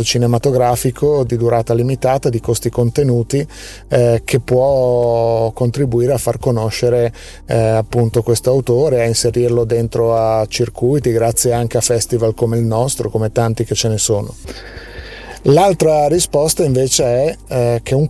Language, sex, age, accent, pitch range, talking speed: Italian, male, 30-49, native, 115-125 Hz, 145 wpm